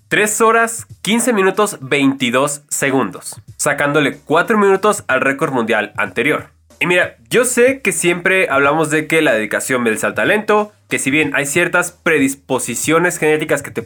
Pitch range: 130-175 Hz